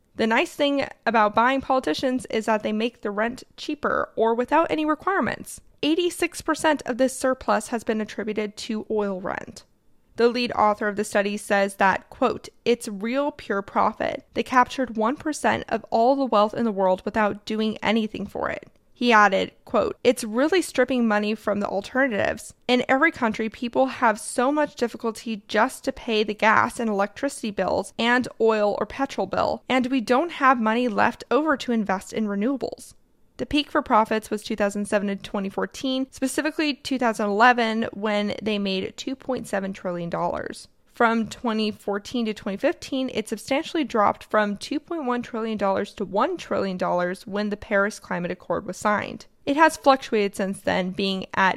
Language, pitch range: English, 210-260 Hz